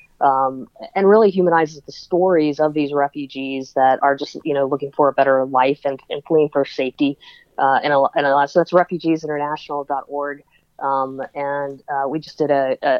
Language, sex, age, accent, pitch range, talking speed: English, female, 30-49, American, 140-160 Hz, 190 wpm